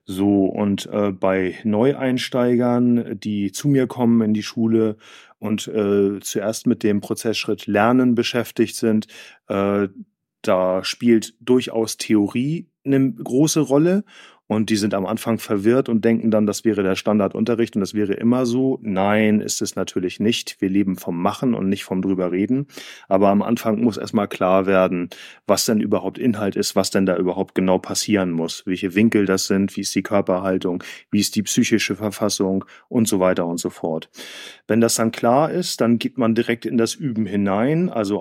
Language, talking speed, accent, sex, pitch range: German, 175 wpm, German, male, 100-120 Hz